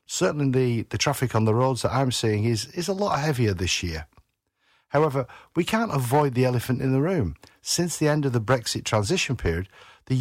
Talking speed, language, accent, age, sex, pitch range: 205 wpm, English, British, 50-69, male, 110-150 Hz